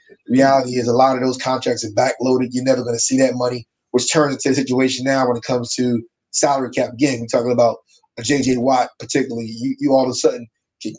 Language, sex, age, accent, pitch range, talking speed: English, male, 20-39, American, 120-135 Hz, 240 wpm